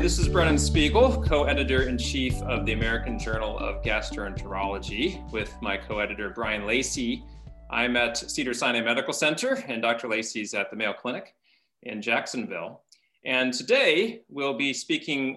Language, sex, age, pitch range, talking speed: English, male, 30-49, 120-155 Hz, 140 wpm